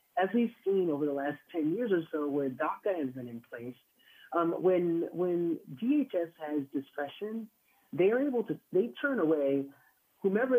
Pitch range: 145-185 Hz